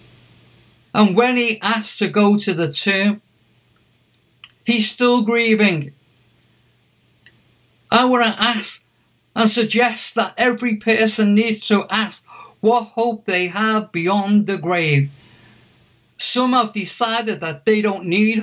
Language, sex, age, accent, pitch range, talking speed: English, male, 50-69, British, 150-220 Hz, 125 wpm